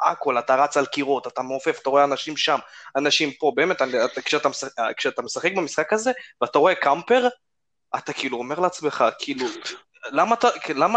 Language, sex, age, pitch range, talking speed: Hebrew, male, 20-39, 130-170 Hz, 175 wpm